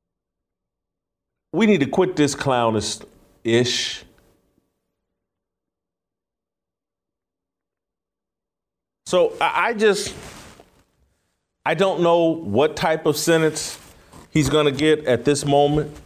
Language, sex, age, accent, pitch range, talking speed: English, male, 40-59, American, 105-150 Hz, 90 wpm